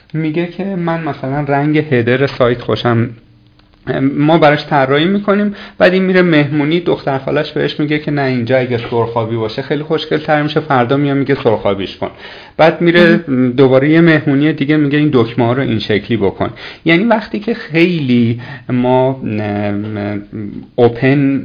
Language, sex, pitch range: Persian, male, 115-150 Hz